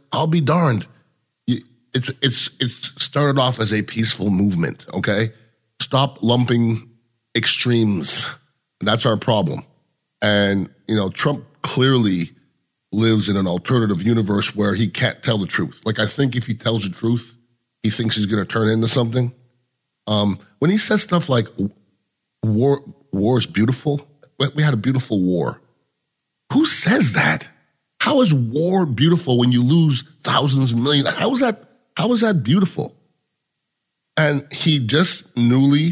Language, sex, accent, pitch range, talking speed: English, male, American, 110-150 Hz, 150 wpm